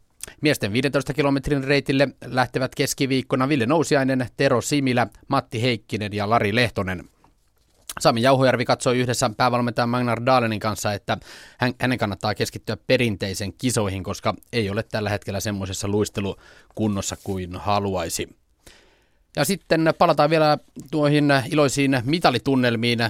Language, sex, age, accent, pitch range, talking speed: Finnish, male, 30-49, native, 105-130 Hz, 115 wpm